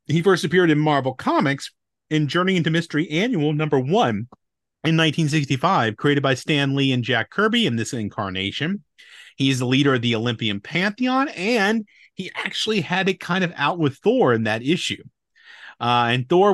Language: English